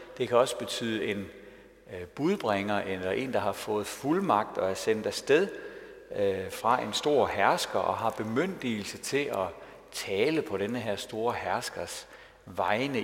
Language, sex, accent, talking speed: Danish, male, native, 150 wpm